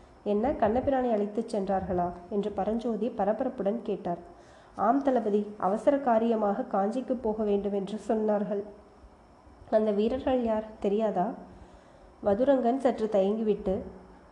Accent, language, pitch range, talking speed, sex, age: native, Tamil, 200-235 Hz, 100 wpm, female, 20-39